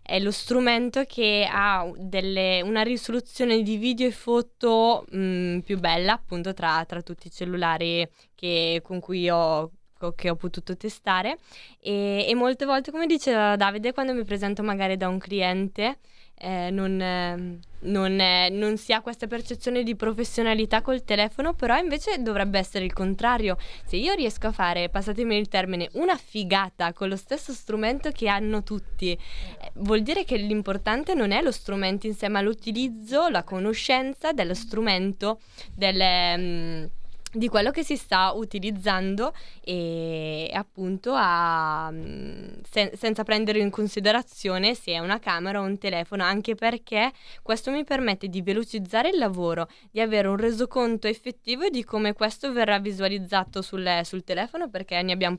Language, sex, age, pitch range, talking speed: Italian, female, 20-39, 180-225 Hz, 150 wpm